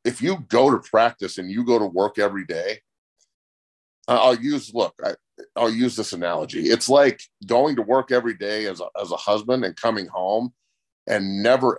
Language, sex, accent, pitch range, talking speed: English, male, American, 110-135 Hz, 185 wpm